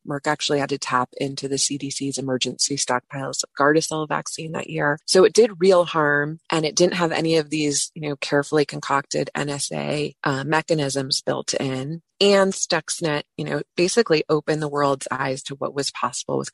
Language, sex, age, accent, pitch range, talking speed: English, female, 30-49, American, 135-155 Hz, 180 wpm